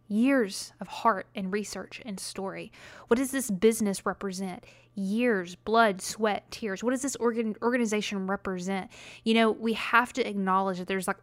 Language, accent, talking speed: English, American, 165 wpm